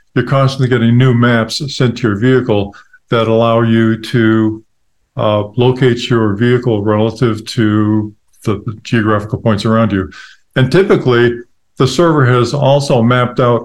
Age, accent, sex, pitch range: 50-69, American, male, 110-125 Hz